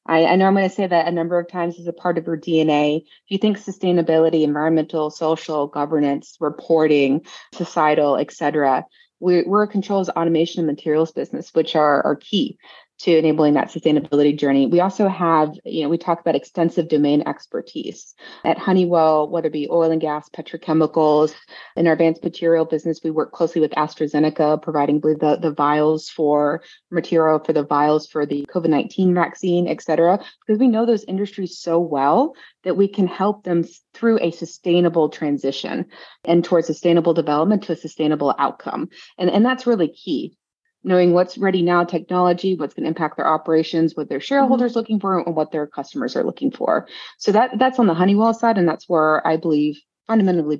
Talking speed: 185 wpm